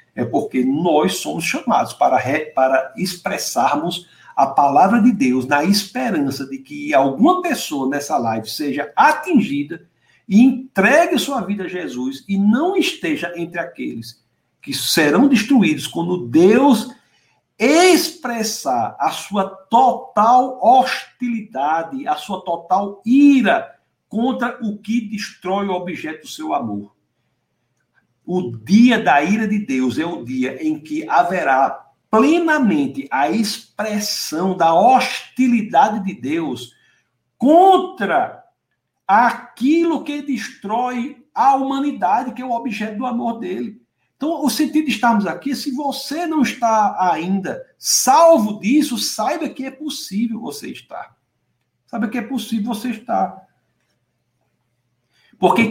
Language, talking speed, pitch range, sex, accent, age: Portuguese, 125 wpm, 180-275 Hz, male, Brazilian, 60-79